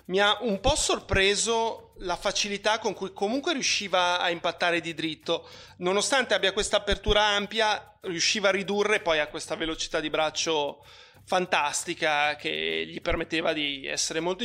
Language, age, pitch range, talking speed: Italian, 30-49, 165-200 Hz, 150 wpm